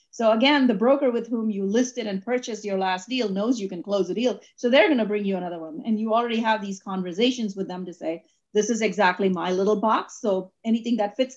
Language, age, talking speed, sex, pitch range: English, 30-49, 250 wpm, female, 180-230 Hz